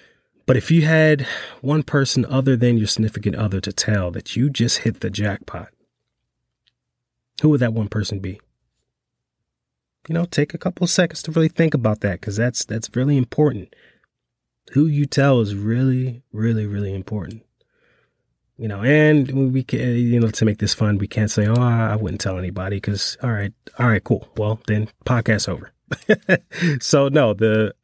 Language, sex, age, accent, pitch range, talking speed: English, male, 30-49, American, 100-125 Hz, 175 wpm